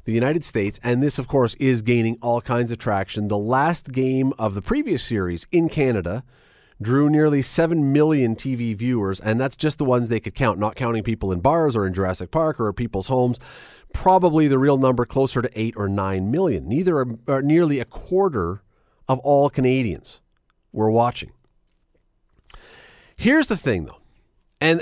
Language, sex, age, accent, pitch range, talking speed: English, male, 40-59, American, 110-155 Hz, 180 wpm